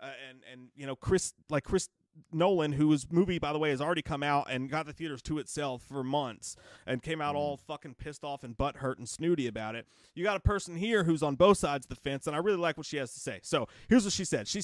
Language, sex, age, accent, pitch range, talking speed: English, male, 30-49, American, 140-180 Hz, 270 wpm